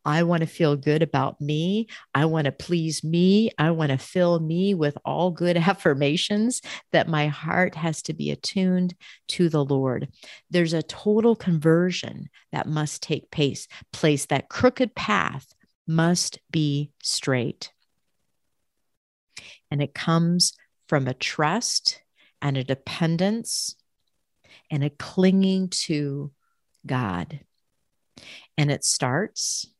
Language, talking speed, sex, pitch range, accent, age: English, 125 wpm, female, 145-180 Hz, American, 50-69